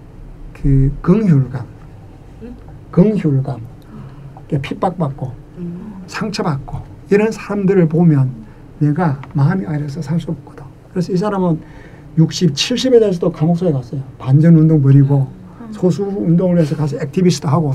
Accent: native